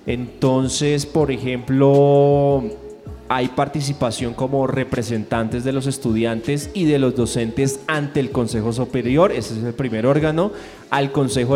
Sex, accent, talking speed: male, Colombian, 130 wpm